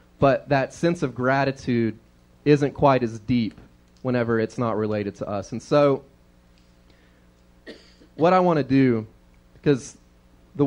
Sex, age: male, 30-49